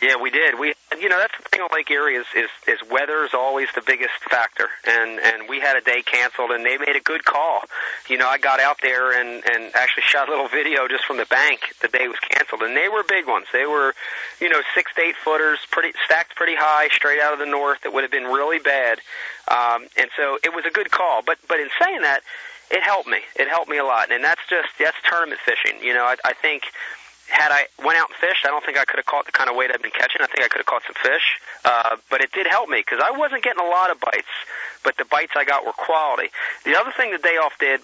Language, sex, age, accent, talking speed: English, male, 30-49, American, 275 wpm